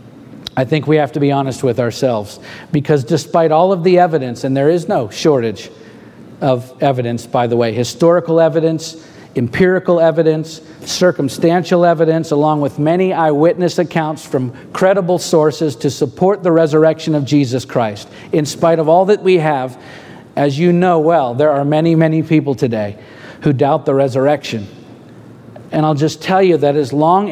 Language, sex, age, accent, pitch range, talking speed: English, male, 50-69, American, 150-180 Hz, 165 wpm